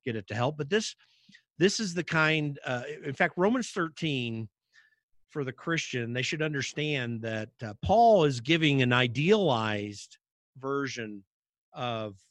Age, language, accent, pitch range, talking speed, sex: 50-69, English, American, 120-165 Hz, 145 wpm, male